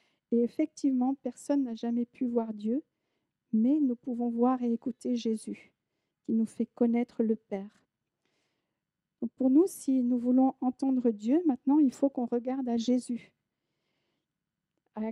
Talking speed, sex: 145 wpm, female